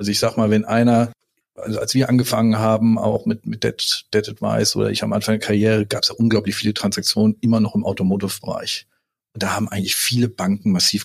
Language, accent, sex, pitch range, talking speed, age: German, German, male, 110-125 Hz, 215 wpm, 40-59